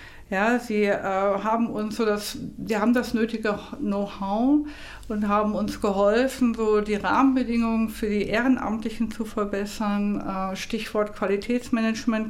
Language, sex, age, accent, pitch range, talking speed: German, female, 50-69, German, 200-240 Hz, 130 wpm